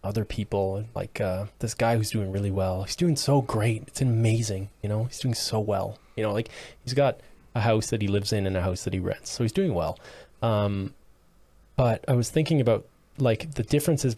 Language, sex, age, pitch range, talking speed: English, male, 20-39, 100-120 Hz, 220 wpm